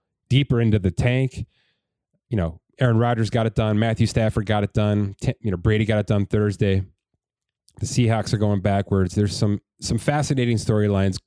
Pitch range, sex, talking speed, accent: 95-115 Hz, male, 180 wpm, American